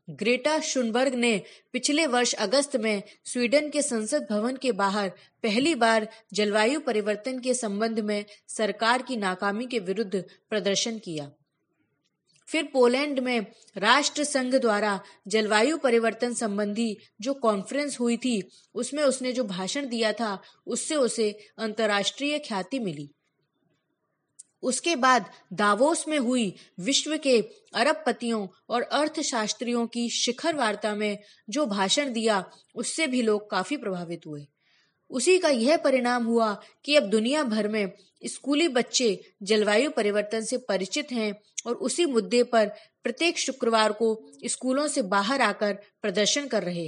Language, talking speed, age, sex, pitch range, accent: Hindi, 135 wpm, 20-39, female, 210-270 Hz, native